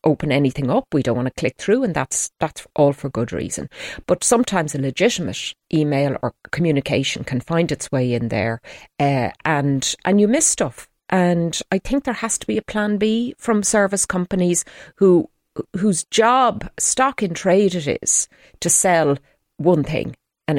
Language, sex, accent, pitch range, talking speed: English, female, Irish, 135-190 Hz, 180 wpm